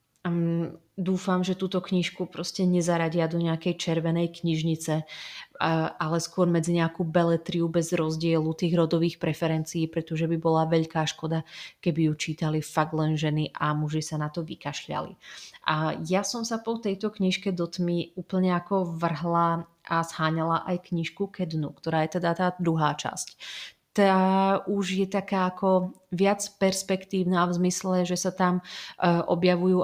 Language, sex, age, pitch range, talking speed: Slovak, female, 30-49, 160-180 Hz, 155 wpm